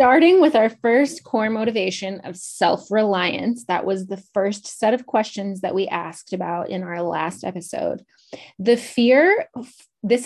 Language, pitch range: English, 185-235 Hz